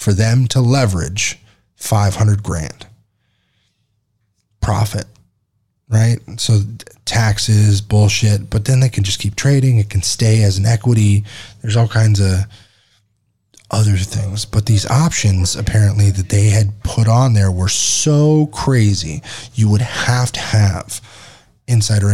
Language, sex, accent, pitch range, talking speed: English, male, American, 105-125 Hz, 135 wpm